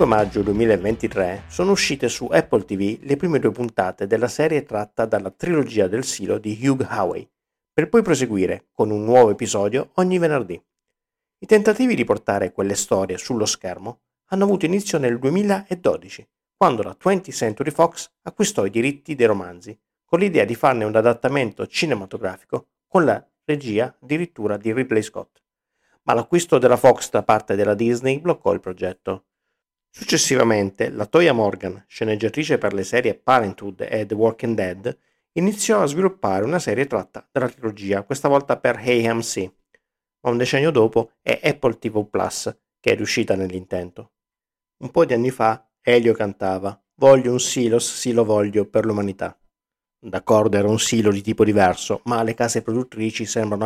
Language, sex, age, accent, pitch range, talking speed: Italian, male, 50-69, native, 105-135 Hz, 160 wpm